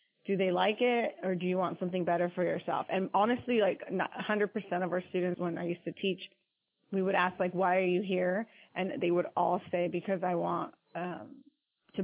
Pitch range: 180-200 Hz